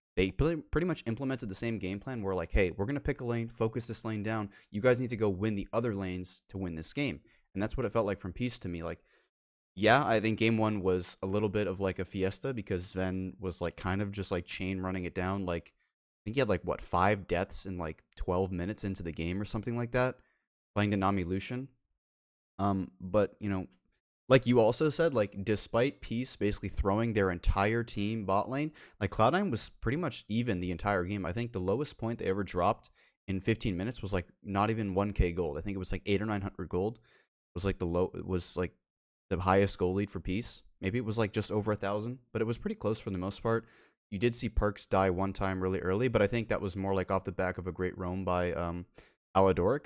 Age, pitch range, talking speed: 20-39, 95-115 Hz, 245 wpm